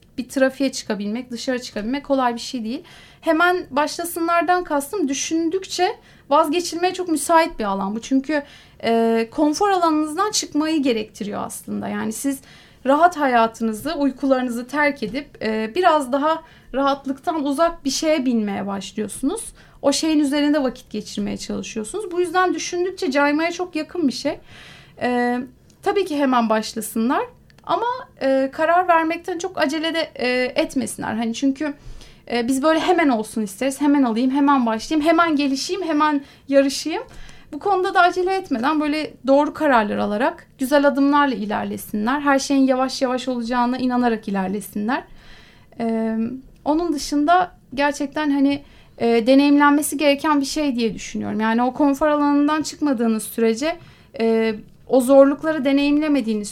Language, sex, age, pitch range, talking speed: Turkish, female, 30-49, 240-315 Hz, 135 wpm